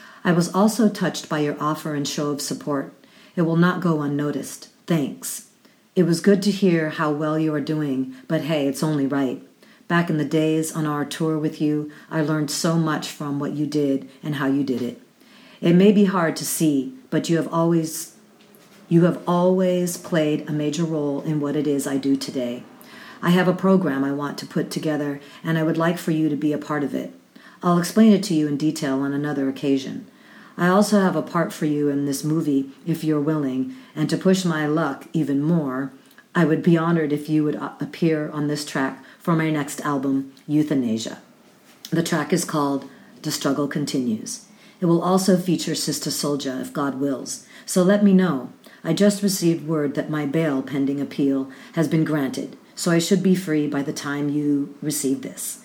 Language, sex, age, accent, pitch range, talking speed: English, female, 50-69, American, 145-175 Hz, 205 wpm